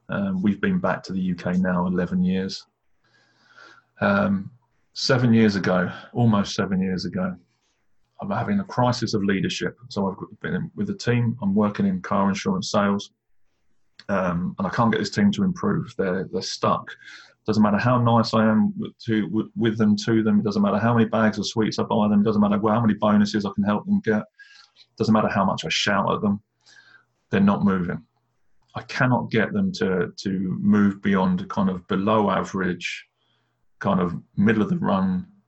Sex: male